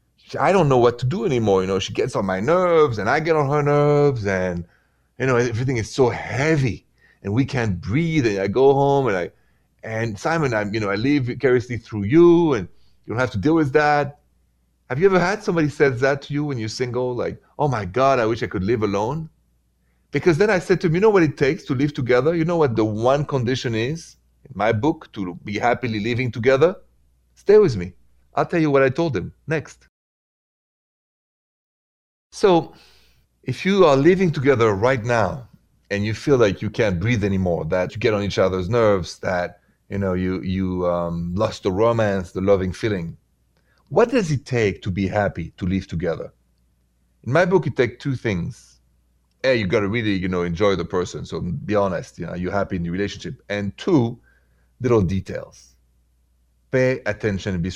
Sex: male